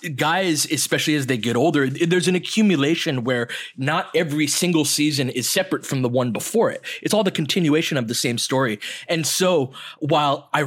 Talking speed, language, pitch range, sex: 185 wpm, English, 130-170 Hz, male